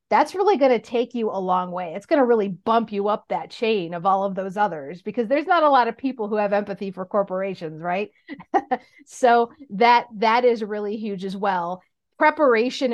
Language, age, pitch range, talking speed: English, 40-59, 195-245 Hz, 210 wpm